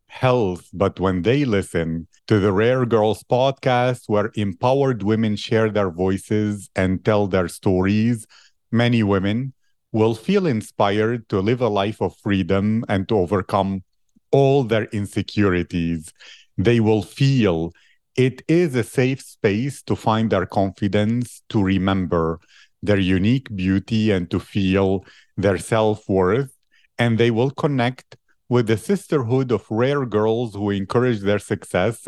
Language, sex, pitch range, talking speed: English, male, 95-125 Hz, 135 wpm